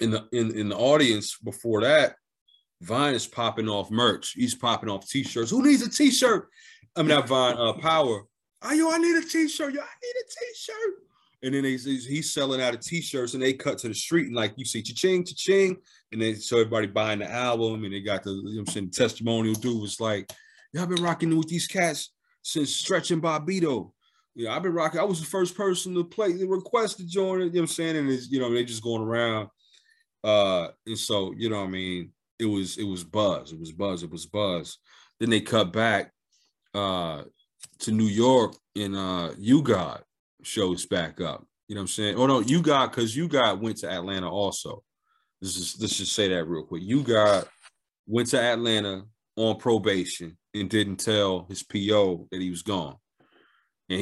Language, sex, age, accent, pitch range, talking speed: English, male, 30-49, American, 105-165 Hz, 220 wpm